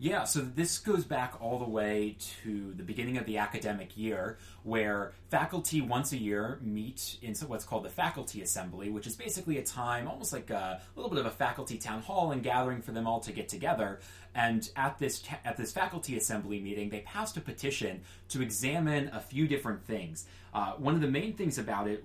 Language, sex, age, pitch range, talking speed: English, male, 20-39, 105-135 Hz, 205 wpm